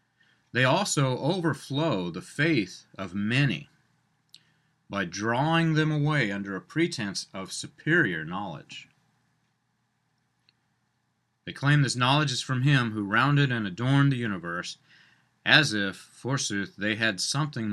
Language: English